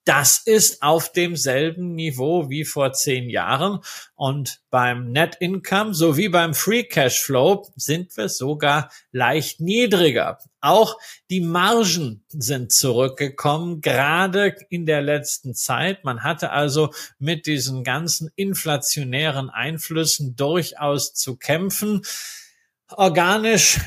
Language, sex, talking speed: German, male, 115 wpm